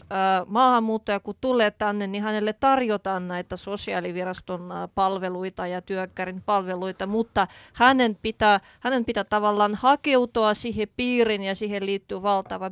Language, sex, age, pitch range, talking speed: Finnish, female, 30-49, 195-255 Hz, 120 wpm